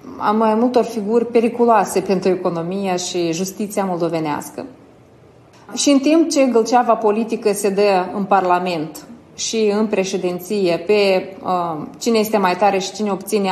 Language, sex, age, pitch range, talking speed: Romanian, female, 20-39, 190-230 Hz, 140 wpm